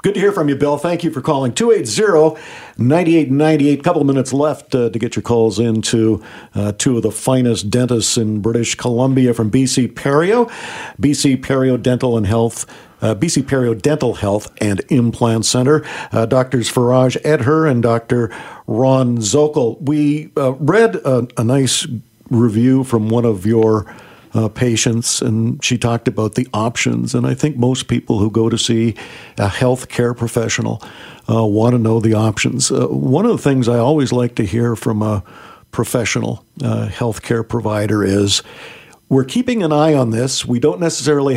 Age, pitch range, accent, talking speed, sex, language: 50-69, 115-145 Hz, American, 175 wpm, male, English